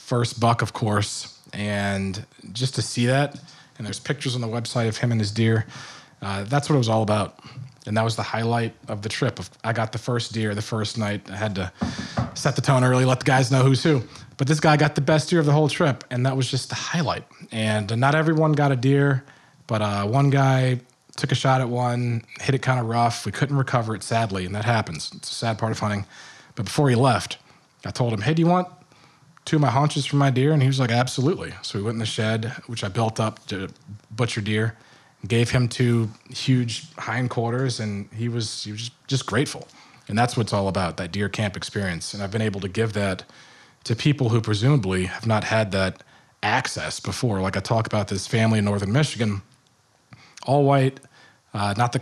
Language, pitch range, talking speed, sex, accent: English, 110-135 Hz, 225 wpm, male, American